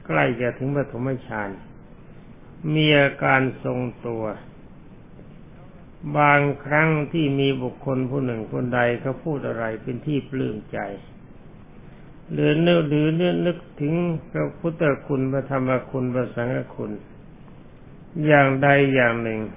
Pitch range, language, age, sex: 120-145 Hz, Thai, 60-79, male